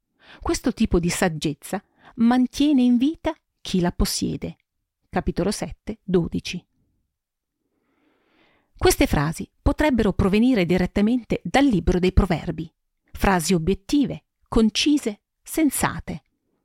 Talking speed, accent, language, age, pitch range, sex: 95 wpm, native, Italian, 40-59, 180-255 Hz, female